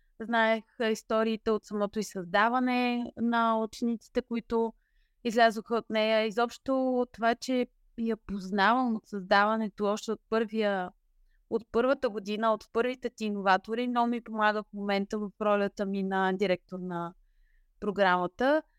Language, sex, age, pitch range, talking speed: Bulgarian, female, 20-39, 210-245 Hz, 135 wpm